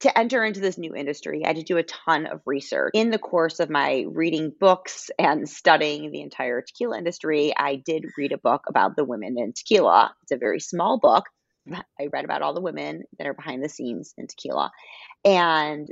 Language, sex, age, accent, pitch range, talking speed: English, female, 30-49, American, 140-185 Hz, 210 wpm